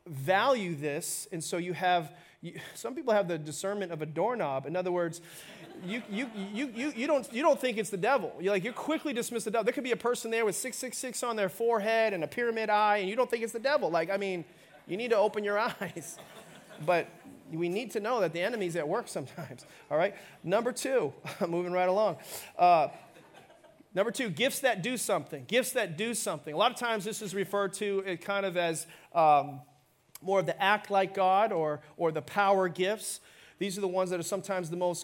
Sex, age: male, 30-49